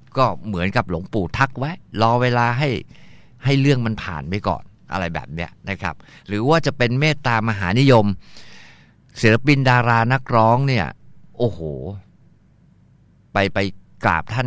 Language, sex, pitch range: Thai, male, 100-130 Hz